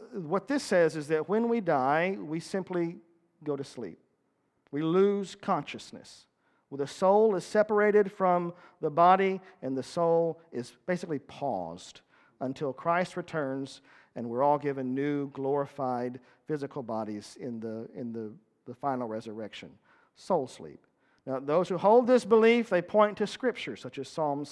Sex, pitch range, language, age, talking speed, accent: male, 140-220 Hz, English, 50-69, 155 wpm, American